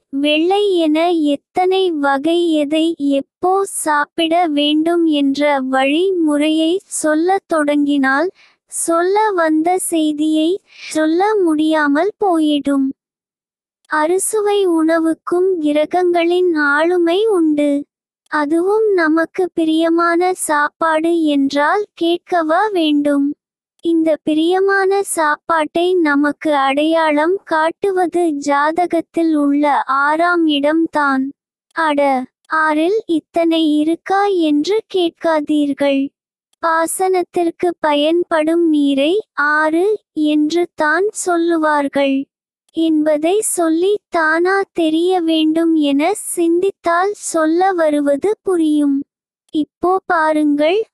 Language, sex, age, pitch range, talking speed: Tamil, male, 20-39, 300-360 Hz, 75 wpm